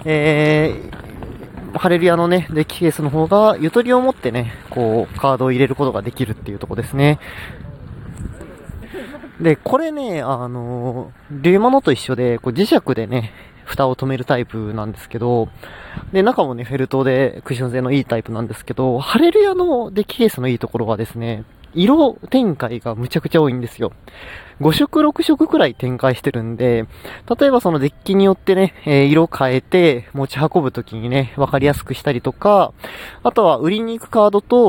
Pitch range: 125-190 Hz